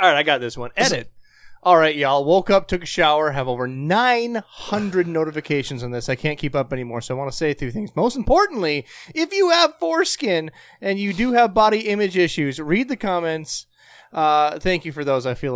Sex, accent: male, American